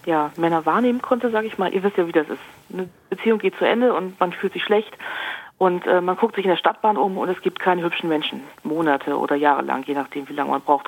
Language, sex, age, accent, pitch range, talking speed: German, female, 40-59, German, 175-225 Hz, 260 wpm